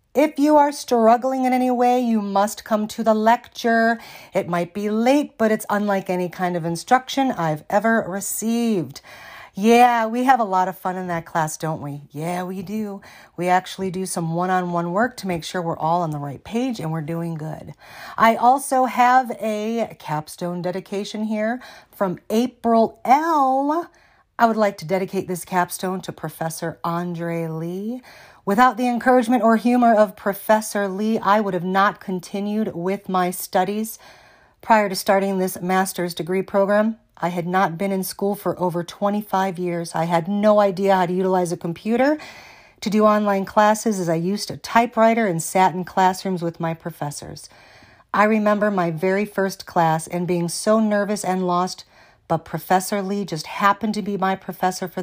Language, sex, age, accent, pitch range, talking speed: English, female, 40-59, American, 175-220 Hz, 175 wpm